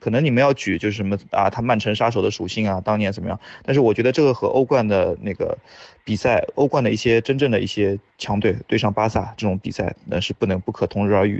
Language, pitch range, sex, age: Chinese, 105-130 Hz, male, 20-39